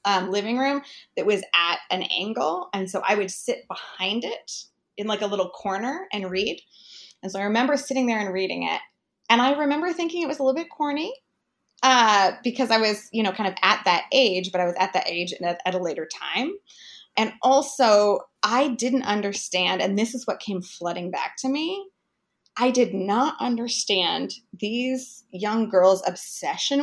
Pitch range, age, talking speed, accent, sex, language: 190-260 Hz, 20-39, 190 wpm, American, female, English